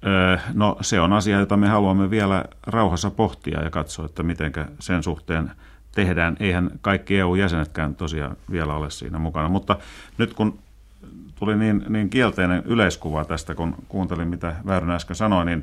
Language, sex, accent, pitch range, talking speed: Finnish, male, native, 80-100 Hz, 155 wpm